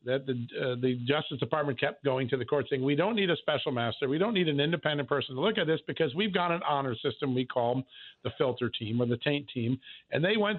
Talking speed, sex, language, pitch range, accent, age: 260 wpm, male, English, 130-160 Hz, American, 50-69